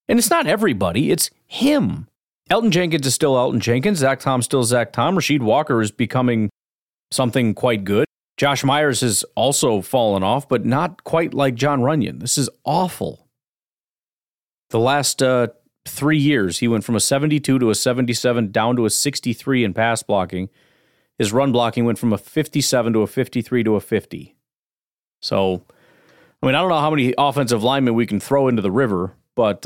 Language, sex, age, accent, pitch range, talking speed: English, male, 40-59, American, 105-130 Hz, 180 wpm